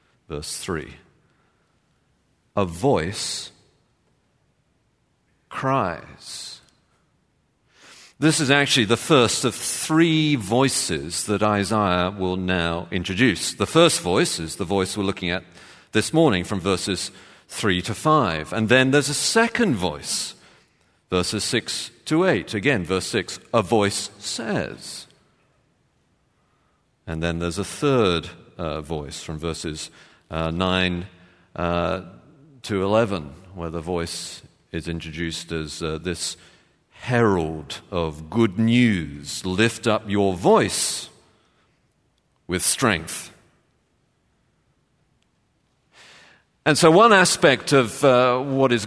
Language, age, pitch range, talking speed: English, 40-59, 85-120 Hz, 110 wpm